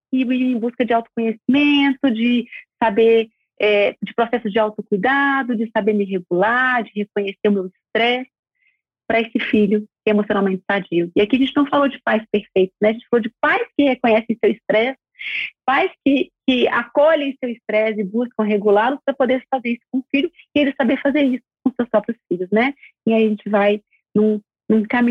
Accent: Brazilian